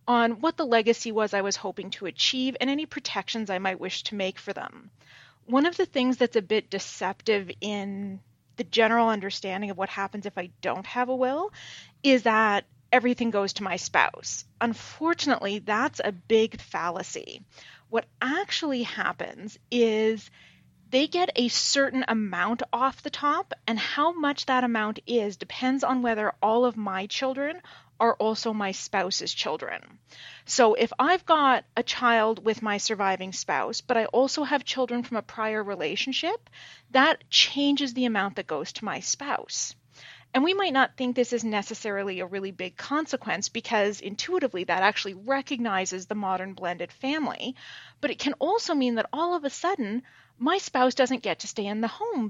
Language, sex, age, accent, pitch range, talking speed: English, female, 30-49, American, 200-265 Hz, 175 wpm